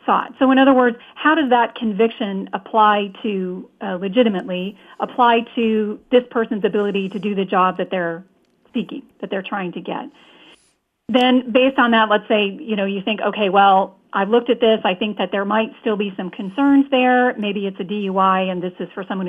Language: English